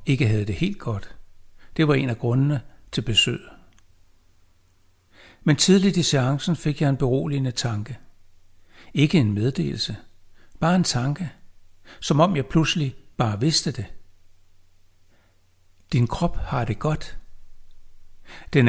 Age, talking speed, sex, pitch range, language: 60-79, 130 wpm, male, 90-140 Hz, Danish